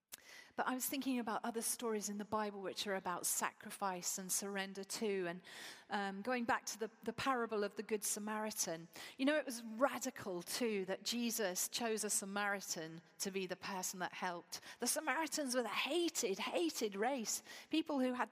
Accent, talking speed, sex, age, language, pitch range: British, 185 wpm, female, 40-59, English, 200-265 Hz